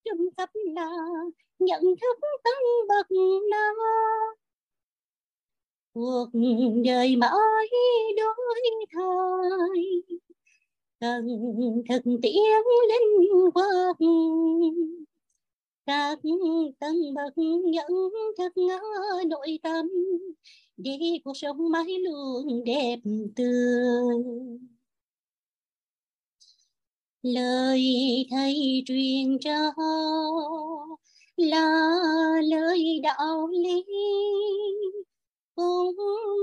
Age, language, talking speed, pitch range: 30-49, Vietnamese, 60 wpm, 295-405 Hz